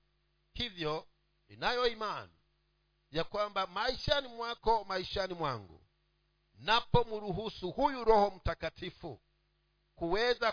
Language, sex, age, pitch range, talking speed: Swahili, male, 50-69, 165-205 Hz, 85 wpm